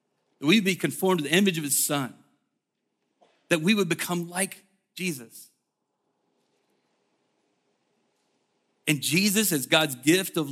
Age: 40-59